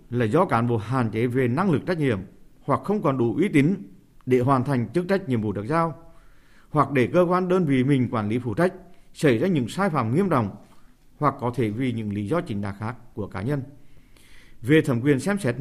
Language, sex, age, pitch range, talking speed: Vietnamese, male, 50-69, 115-155 Hz, 240 wpm